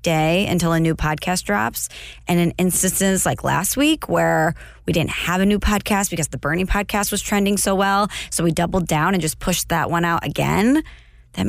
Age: 20-39